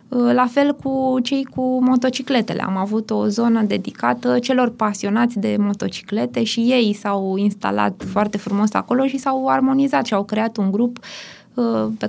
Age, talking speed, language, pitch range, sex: 20-39, 155 wpm, Romanian, 205-255 Hz, female